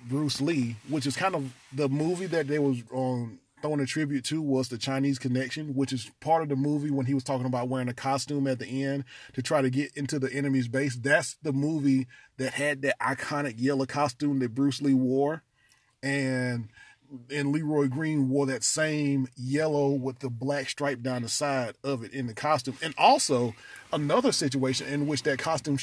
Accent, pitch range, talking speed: American, 130-150 Hz, 200 wpm